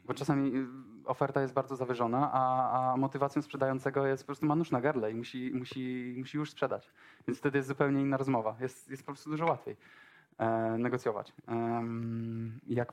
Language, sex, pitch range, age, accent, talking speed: Polish, male, 115-140 Hz, 20-39, native, 165 wpm